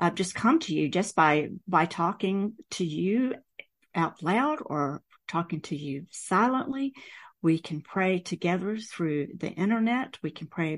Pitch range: 165-205 Hz